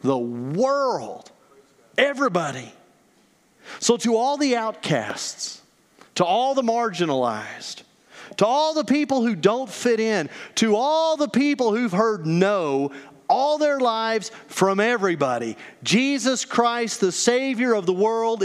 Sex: male